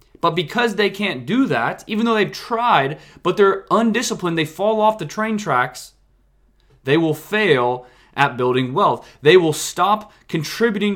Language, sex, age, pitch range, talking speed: English, male, 20-39, 135-180 Hz, 160 wpm